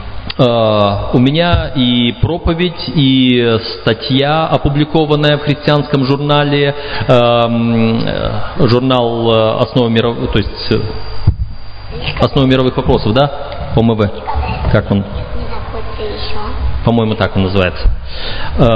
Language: Russian